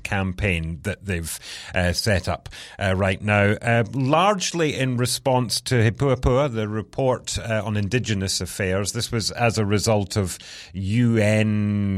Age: 40-59